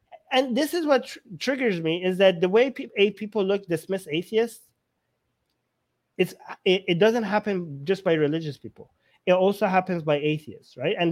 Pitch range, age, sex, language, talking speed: 155-210 Hz, 20-39, male, English, 155 wpm